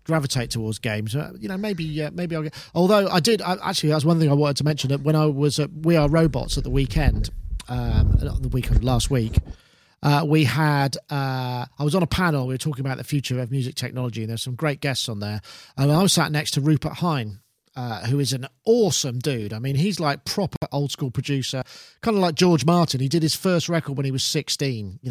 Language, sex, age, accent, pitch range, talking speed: English, male, 40-59, British, 130-155 Hz, 245 wpm